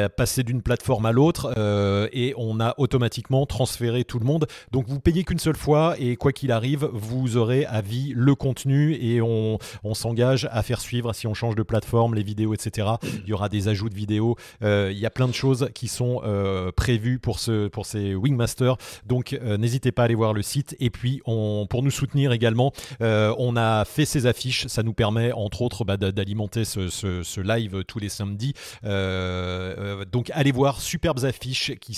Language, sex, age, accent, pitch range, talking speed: French, male, 30-49, French, 105-135 Hz, 210 wpm